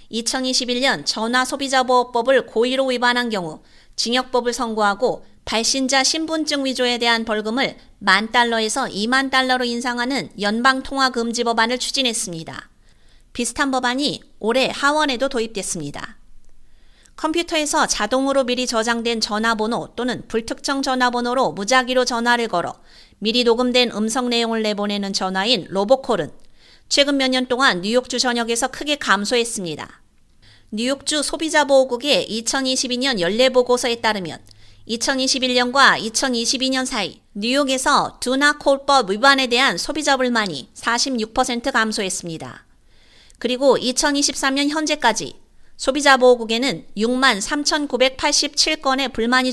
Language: Korean